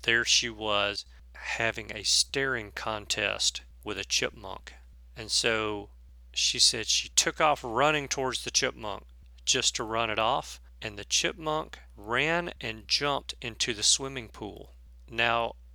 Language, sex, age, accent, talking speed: English, male, 40-59, American, 140 wpm